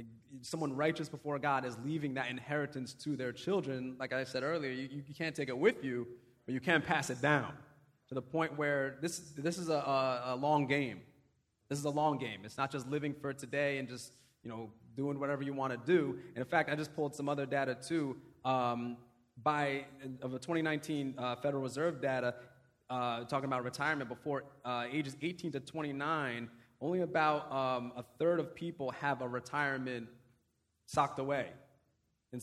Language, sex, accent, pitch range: English, male, American, 125-150 Hz